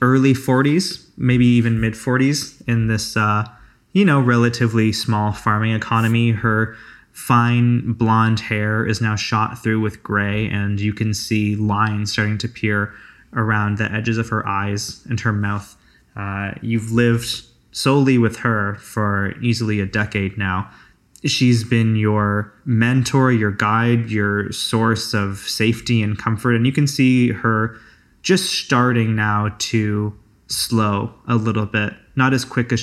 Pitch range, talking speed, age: 105-120 Hz, 150 wpm, 20-39